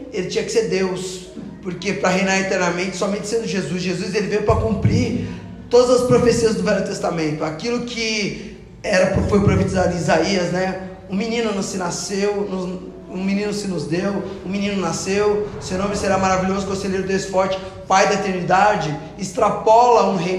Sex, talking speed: male, 170 wpm